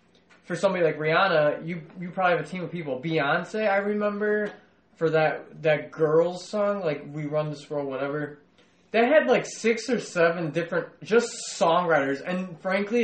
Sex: male